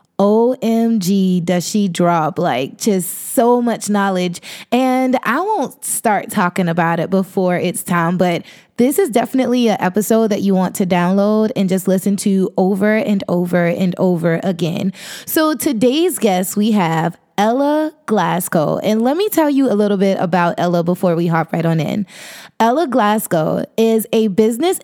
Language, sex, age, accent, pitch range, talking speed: English, female, 20-39, American, 190-255 Hz, 165 wpm